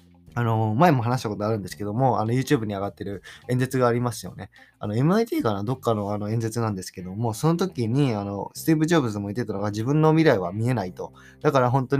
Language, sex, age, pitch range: Japanese, male, 20-39, 105-140 Hz